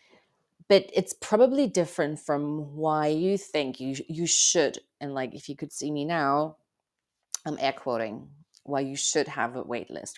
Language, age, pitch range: English, 30-49, 135-170 Hz